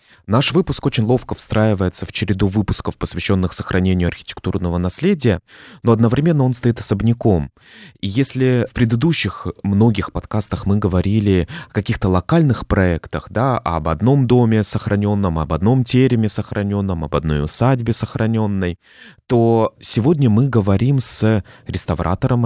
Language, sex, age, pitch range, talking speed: Russian, male, 20-39, 95-120 Hz, 130 wpm